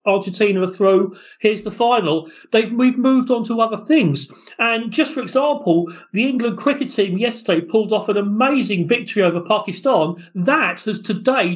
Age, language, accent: 40-59, English, British